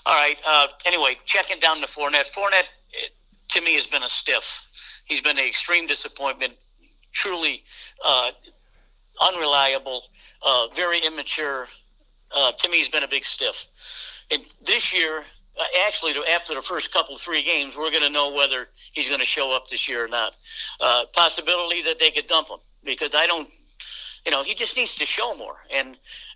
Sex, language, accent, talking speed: male, English, American, 175 wpm